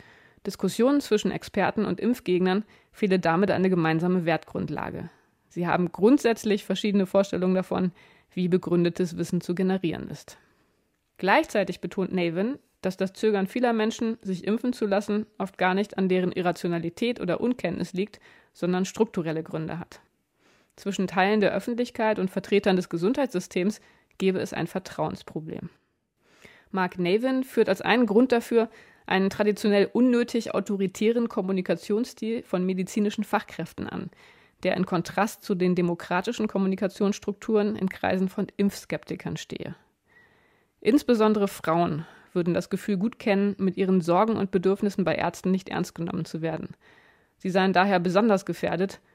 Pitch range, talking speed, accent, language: 180-210 Hz, 135 wpm, German, German